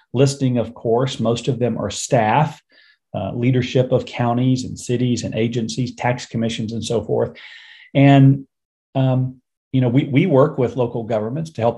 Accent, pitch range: American, 120-140 Hz